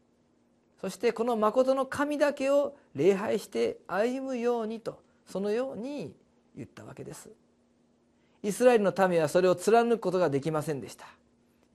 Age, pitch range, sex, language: 40-59, 170-240 Hz, male, Japanese